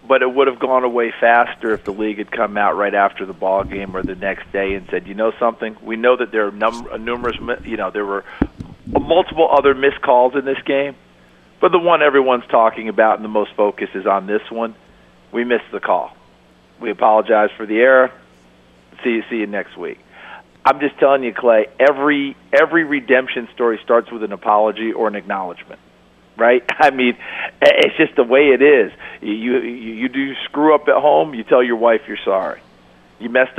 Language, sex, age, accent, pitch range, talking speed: English, male, 50-69, American, 105-130 Hz, 205 wpm